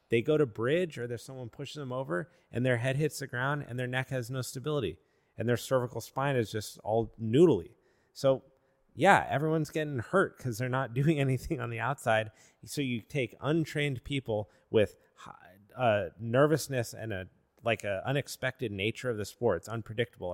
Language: English